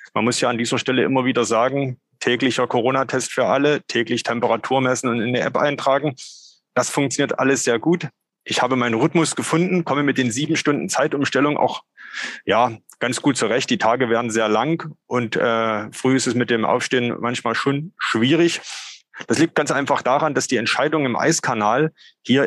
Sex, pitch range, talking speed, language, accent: male, 115-140 Hz, 180 wpm, German, German